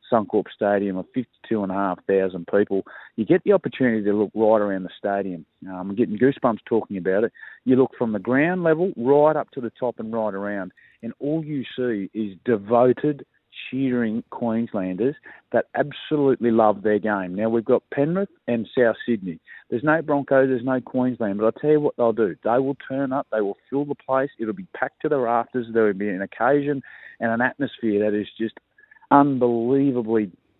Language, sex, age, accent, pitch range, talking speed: English, male, 40-59, Australian, 105-130 Hz, 185 wpm